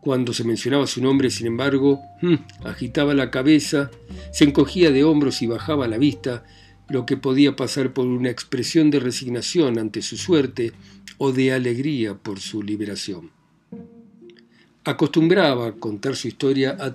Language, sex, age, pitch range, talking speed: Spanish, male, 50-69, 115-145 Hz, 145 wpm